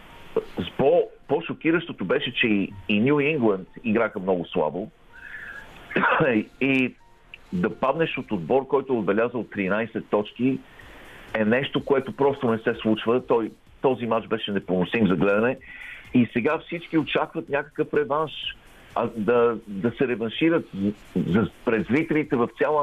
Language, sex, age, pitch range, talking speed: Bulgarian, male, 50-69, 105-150 Hz, 130 wpm